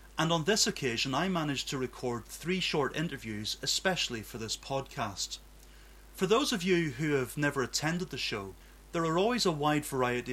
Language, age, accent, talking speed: English, 30-49, British, 180 wpm